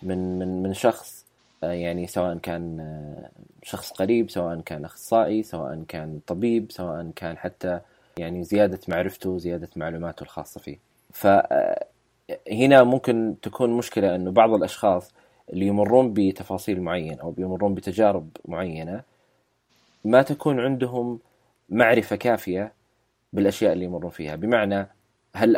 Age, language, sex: 20-39, Arabic, male